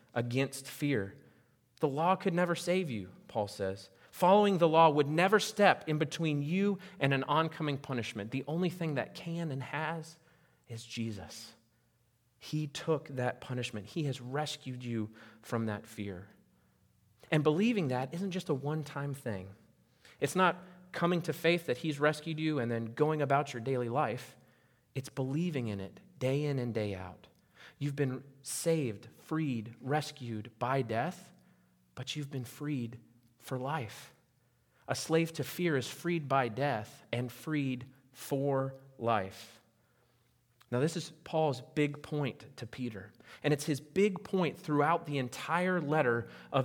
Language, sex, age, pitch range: English, male, 30-49, 120-165 Hz